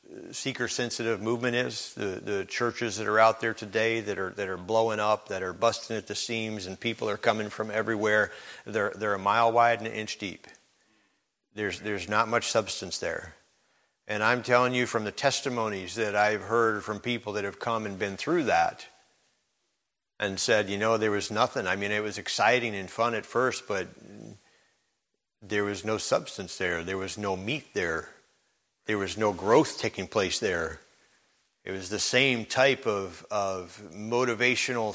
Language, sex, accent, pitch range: English, male, American, 105-125 Hz